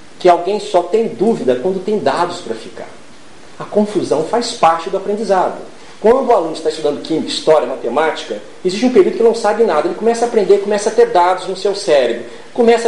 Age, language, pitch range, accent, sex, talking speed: 40-59, Portuguese, 170-240 Hz, Brazilian, male, 205 wpm